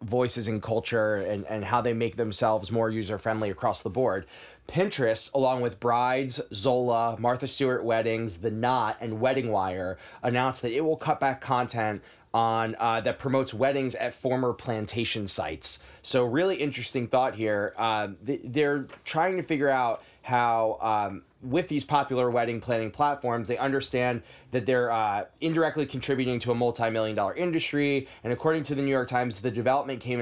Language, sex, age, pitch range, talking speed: English, male, 20-39, 115-135 Hz, 165 wpm